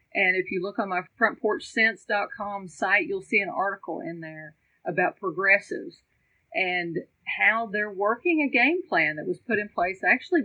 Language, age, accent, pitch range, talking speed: English, 40-59, American, 175-225 Hz, 165 wpm